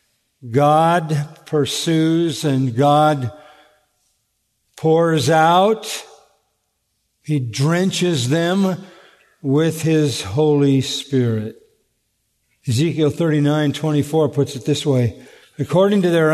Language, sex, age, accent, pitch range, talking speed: English, male, 50-69, American, 135-165 Hz, 85 wpm